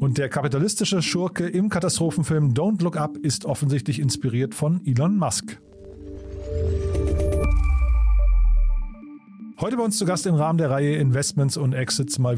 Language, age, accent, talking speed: German, 40-59, German, 135 wpm